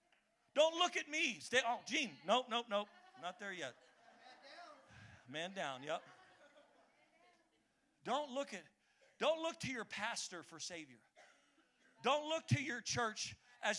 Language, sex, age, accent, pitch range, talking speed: English, male, 40-59, American, 150-245 Hz, 140 wpm